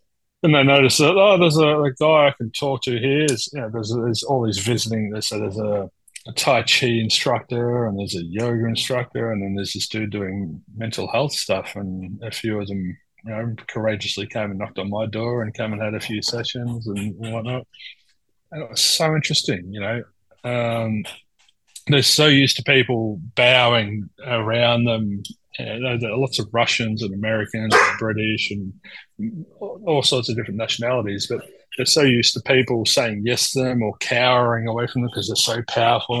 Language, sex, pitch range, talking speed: English, male, 105-125 Hz, 195 wpm